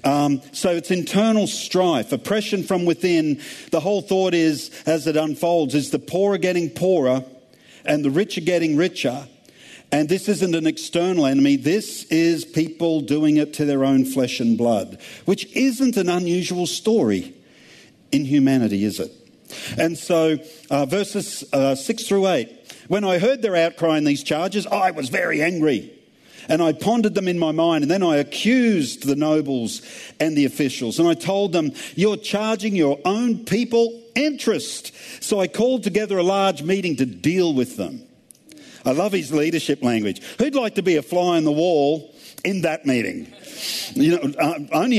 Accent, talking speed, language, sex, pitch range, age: Australian, 175 wpm, English, male, 145-200 Hz, 50-69